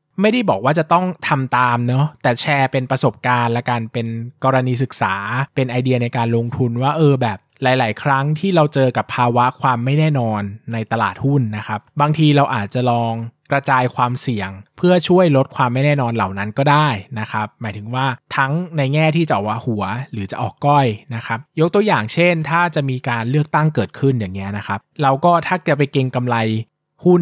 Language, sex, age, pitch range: Thai, male, 20-39, 115-145 Hz